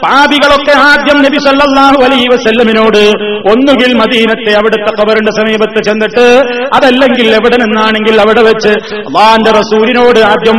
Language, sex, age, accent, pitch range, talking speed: Malayalam, male, 30-49, native, 215-245 Hz, 100 wpm